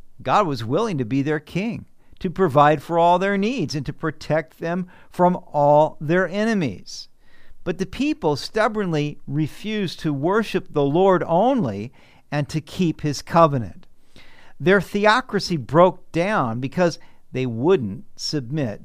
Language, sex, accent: English, male, American